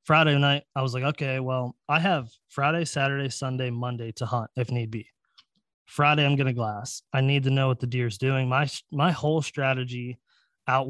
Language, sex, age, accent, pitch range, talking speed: English, male, 20-39, American, 120-140 Hz, 205 wpm